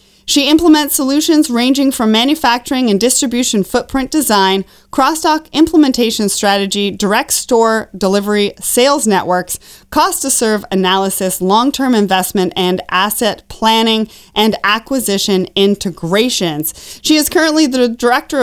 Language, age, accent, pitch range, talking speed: English, 30-49, American, 195-255 Hz, 115 wpm